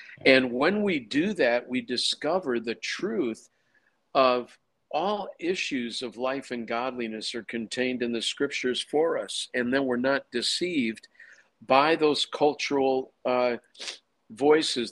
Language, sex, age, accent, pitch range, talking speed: English, male, 50-69, American, 120-140 Hz, 135 wpm